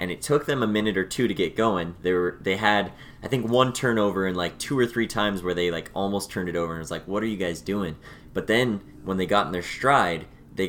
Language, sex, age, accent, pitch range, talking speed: English, male, 20-39, American, 85-105 Hz, 280 wpm